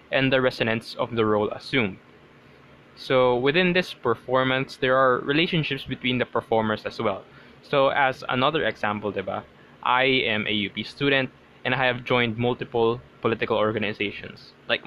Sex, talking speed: male, 150 wpm